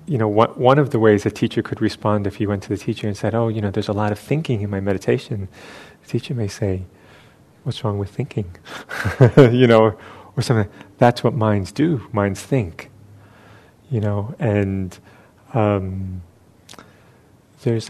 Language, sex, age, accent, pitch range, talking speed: English, male, 30-49, American, 100-120 Hz, 175 wpm